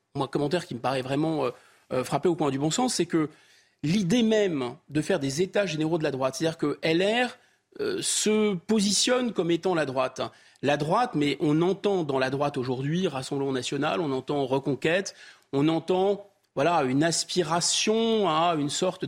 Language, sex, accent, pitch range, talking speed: French, male, French, 140-195 Hz, 180 wpm